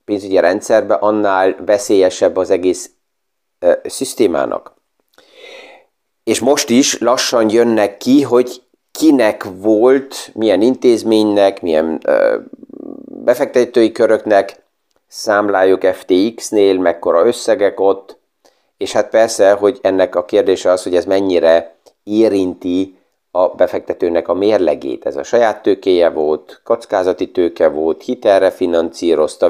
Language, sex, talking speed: Hungarian, male, 110 wpm